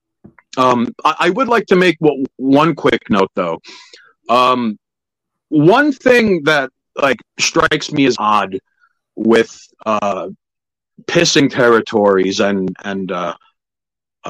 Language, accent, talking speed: English, American, 110 wpm